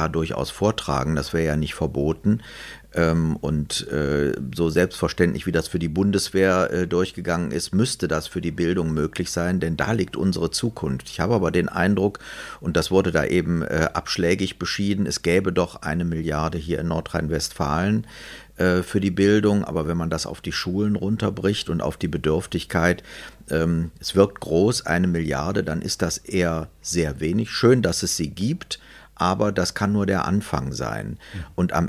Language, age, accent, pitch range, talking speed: German, 50-69, German, 80-100 Hz, 165 wpm